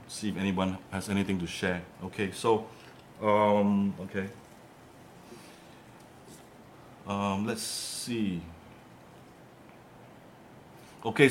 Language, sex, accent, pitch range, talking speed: English, male, Malaysian, 95-115 Hz, 80 wpm